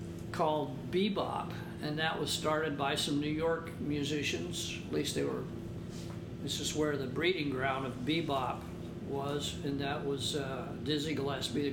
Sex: male